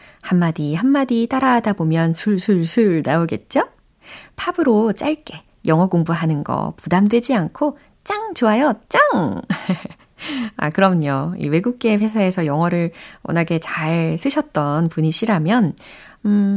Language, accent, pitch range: Korean, native, 165-250 Hz